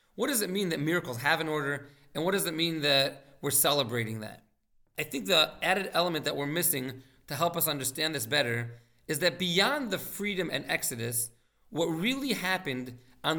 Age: 40-59